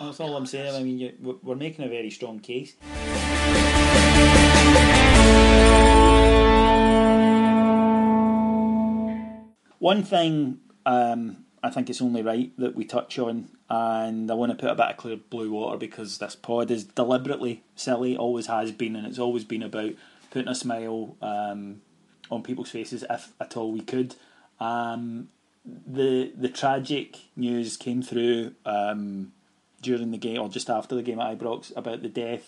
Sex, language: male, English